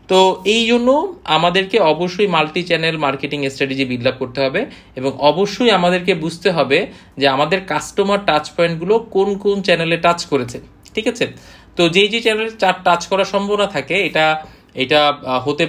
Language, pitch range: Bengali, 140-185 Hz